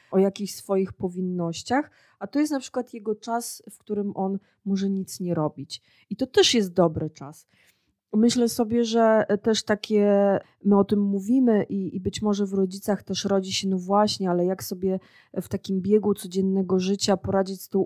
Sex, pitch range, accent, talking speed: female, 180-215 Hz, native, 185 wpm